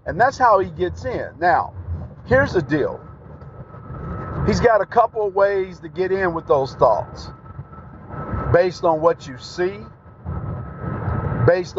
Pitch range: 150-190 Hz